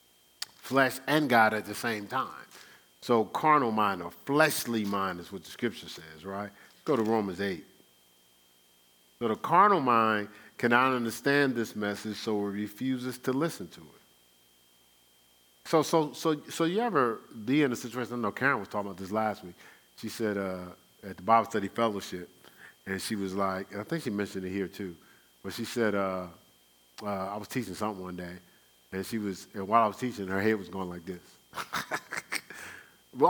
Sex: male